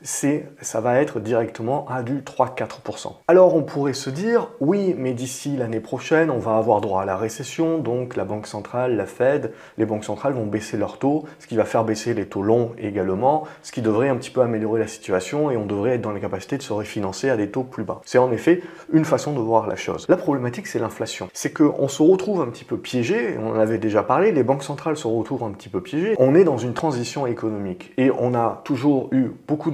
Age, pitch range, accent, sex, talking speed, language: 30-49, 110-145 Hz, French, male, 240 wpm, French